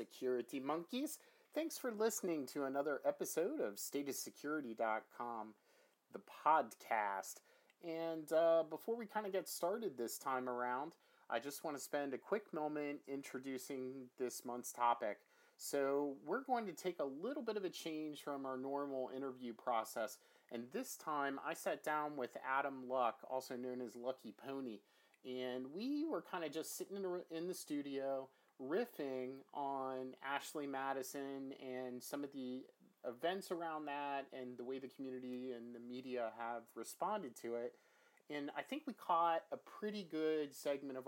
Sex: male